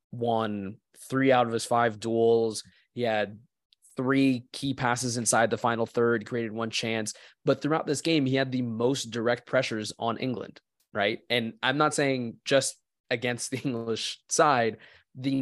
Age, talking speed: 20-39, 165 wpm